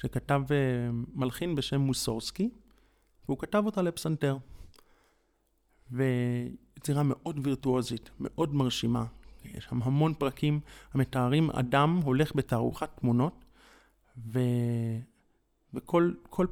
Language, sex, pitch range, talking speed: Hebrew, male, 125-170 Hz, 85 wpm